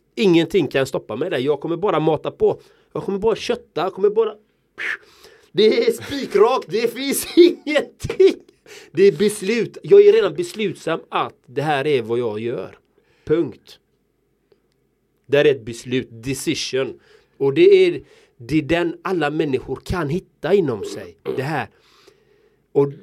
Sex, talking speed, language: male, 145 wpm, Swedish